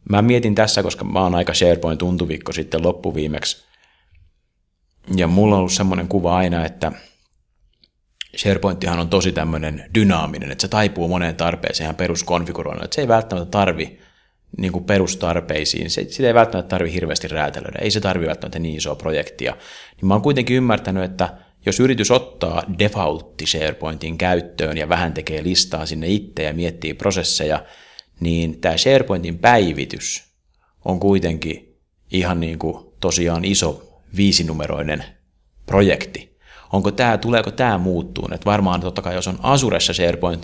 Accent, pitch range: native, 80-100 Hz